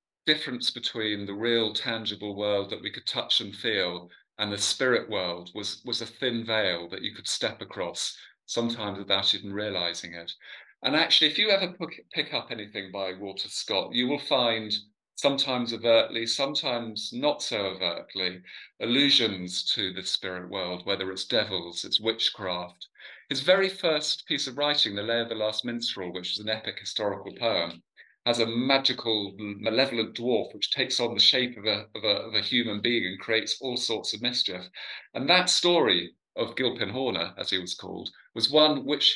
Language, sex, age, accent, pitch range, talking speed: English, male, 40-59, British, 100-140 Hz, 175 wpm